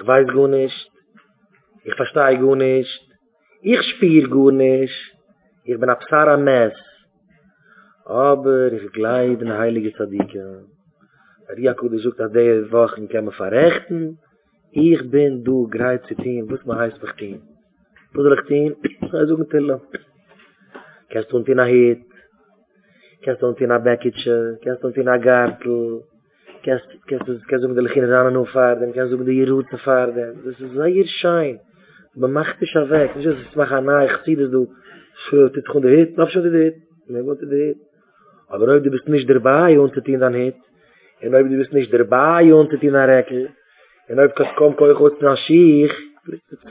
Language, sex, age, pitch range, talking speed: English, male, 30-49, 125-155 Hz, 125 wpm